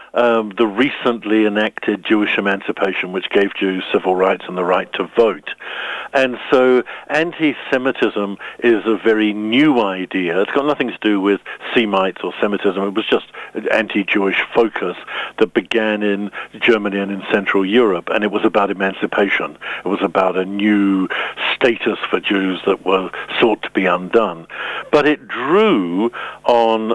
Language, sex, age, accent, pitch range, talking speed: English, male, 60-79, British, 100-115 Hz, 155 wpm